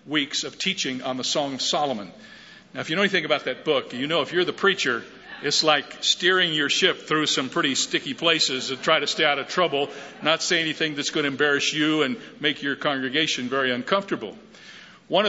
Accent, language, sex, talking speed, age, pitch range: American, English, male, 210 wpm, 50-69, 135-170 Hz